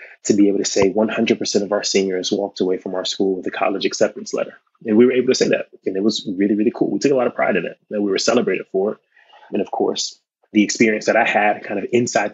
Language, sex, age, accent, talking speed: English, male, 20-39, American, 275 wpm